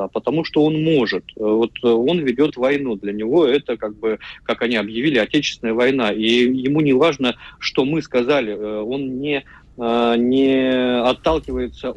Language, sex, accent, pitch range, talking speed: Russian, male, native, 110-130 Hz, 145 wpm